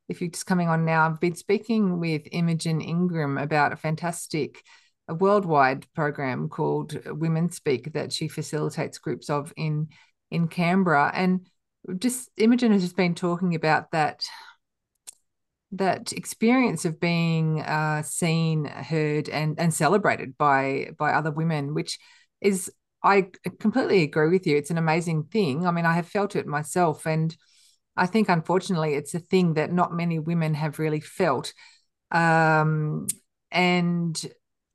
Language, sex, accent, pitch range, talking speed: English, female, Australian, 155-185 Hz, 150 wpm